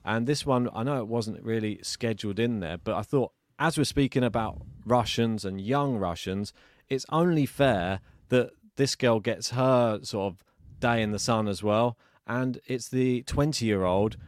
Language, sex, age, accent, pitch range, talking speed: English, male, 30-49, British, 105-135 Hz, 175 wpm